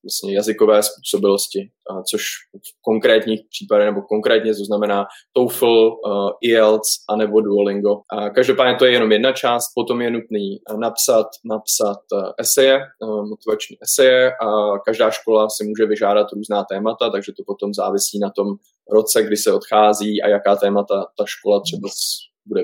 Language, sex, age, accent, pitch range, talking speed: Czech, male, 20-39, native, 105-115 Hz, 145 wpm